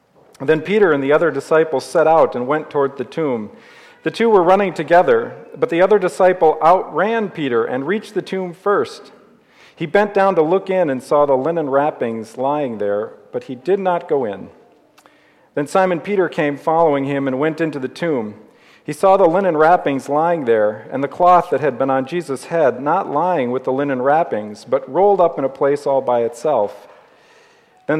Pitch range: 140-185 Hz